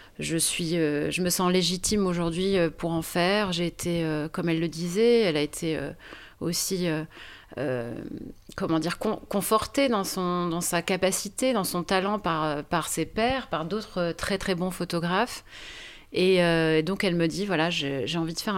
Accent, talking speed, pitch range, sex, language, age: French, 170 wpm, 160-195 Hz, female, French, 30-49